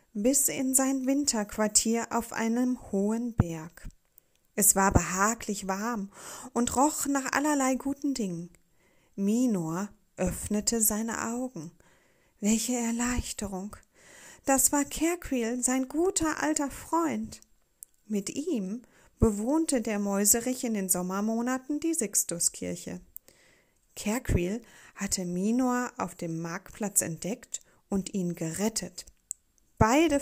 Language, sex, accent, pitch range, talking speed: German, female, German, 190-260 Hz, 105 wpm